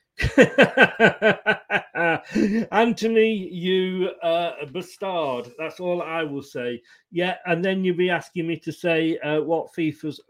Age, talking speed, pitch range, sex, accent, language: 40-59, 120 wpm, 165-215 Hz, male, British, English